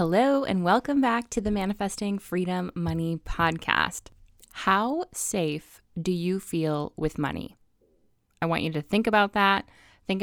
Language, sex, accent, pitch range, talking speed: English, female, American, 160-200 Hz, 145 wpm